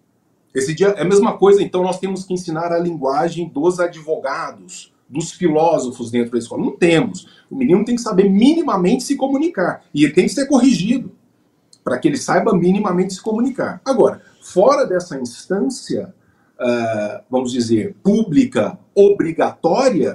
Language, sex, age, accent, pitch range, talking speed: Portuguese, male, 40-59, Brazilian, 130-215 Hz, 155 wpm